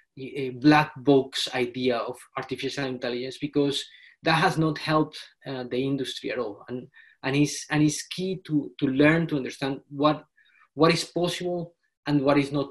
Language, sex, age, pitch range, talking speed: English, male, 20-39, 130-160 Hz, 170 wpm